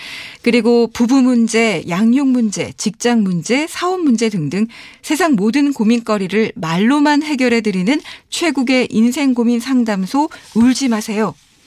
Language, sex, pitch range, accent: Korean, female, 205-275 Hz, native